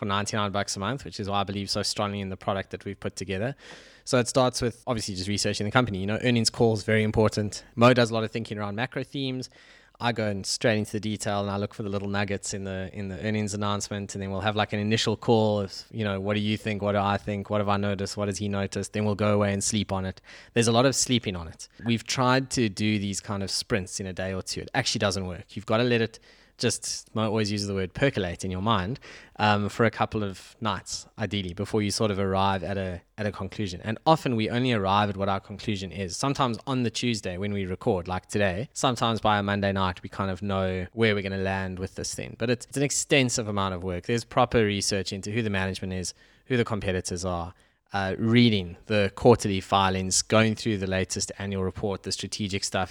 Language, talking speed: English, 250 wpm